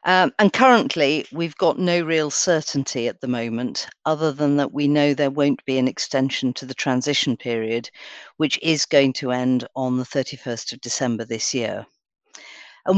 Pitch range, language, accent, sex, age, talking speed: 135-185 Hz, English, British, female, 50-69, 175 wpm